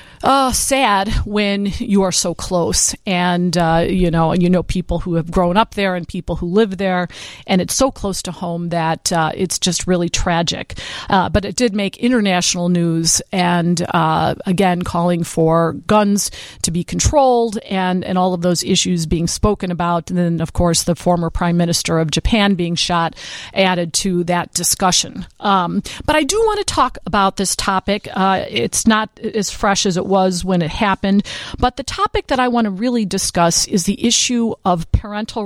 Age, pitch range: 50-69, 175-210 Hz